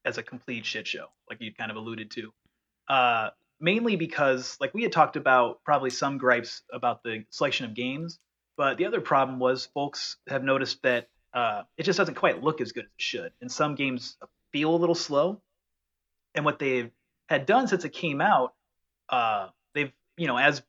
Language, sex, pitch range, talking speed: English, male, 120-170 Hz, 195 wpm